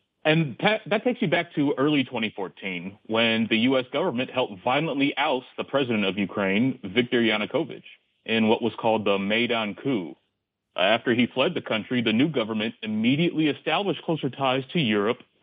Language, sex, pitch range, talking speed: English, male, 115-155 Hz, 165 wpm